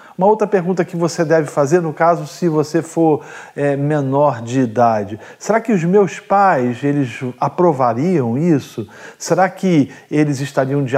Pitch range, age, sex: 140-205 Hz, 40-59, male